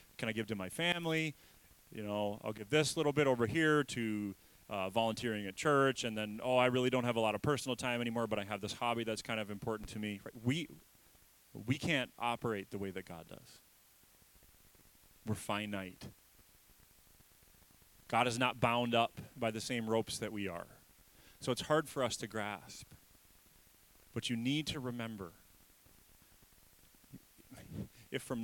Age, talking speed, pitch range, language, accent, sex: 30-49, 175 wpm, 100-125 Hz, English, American, male